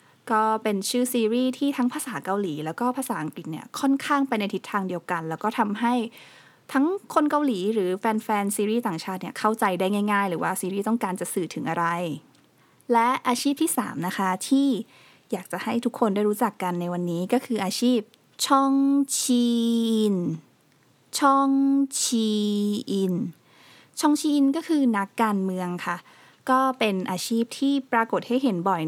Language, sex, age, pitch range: Thai, female, 20-39, 185-245 Hz